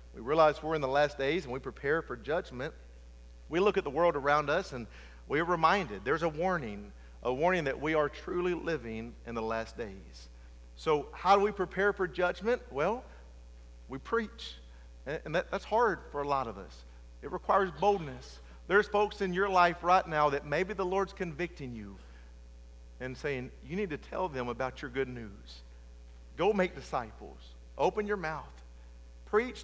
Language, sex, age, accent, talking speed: English, male, 50-69, American, 180 wpm